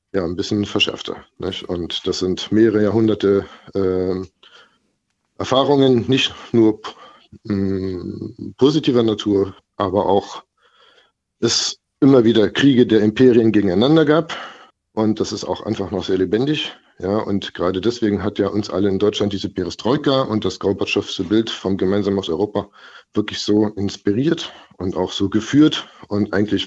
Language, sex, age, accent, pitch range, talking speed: German, male, 50-69, German, 100-115 Hz, 145 wpm